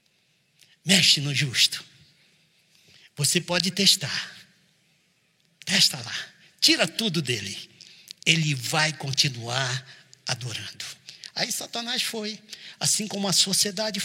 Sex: male